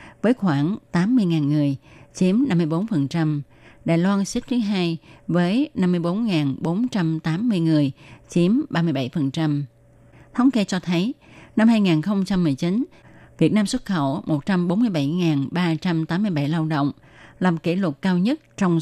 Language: Vietnamese